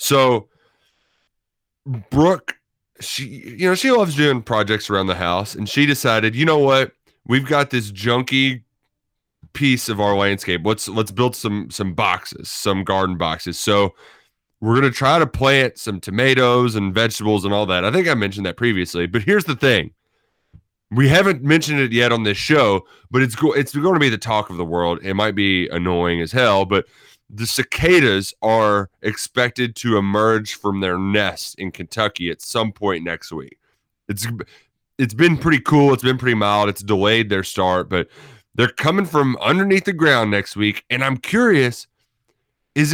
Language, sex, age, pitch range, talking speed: English, male, 30-49, 100-135 Hz, 175 wpm